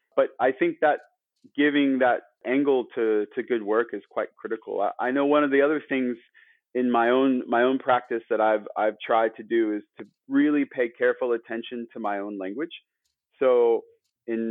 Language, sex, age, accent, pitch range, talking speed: English, male, 30-49, American, 110-150 Hz, 190 wpm